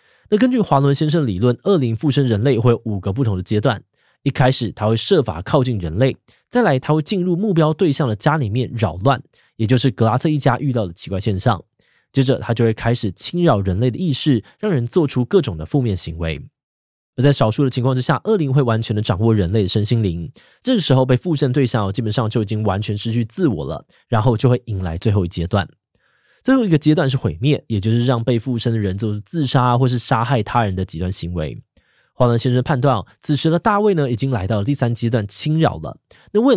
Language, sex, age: Chinese, male, 20-39